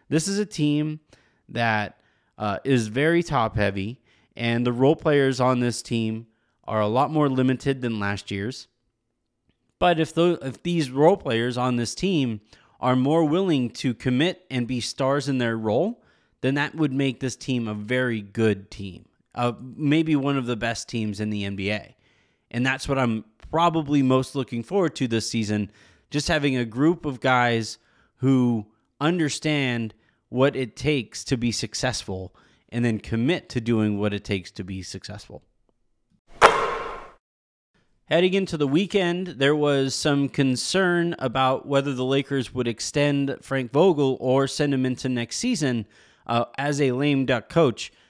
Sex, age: male, 20-39